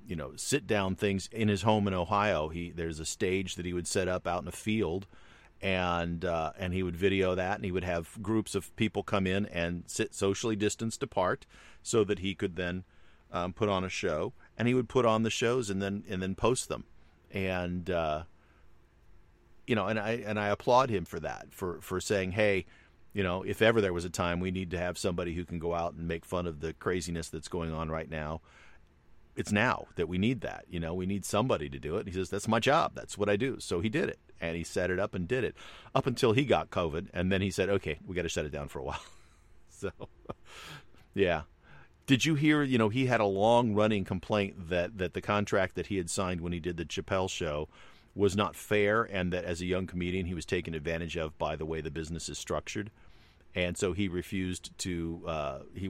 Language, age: English, 40-59